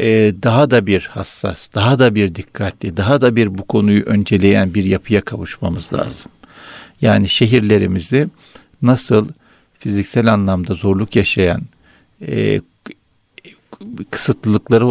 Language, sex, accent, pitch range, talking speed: Turkish, male, native, 95-120 Hz, 105 wpm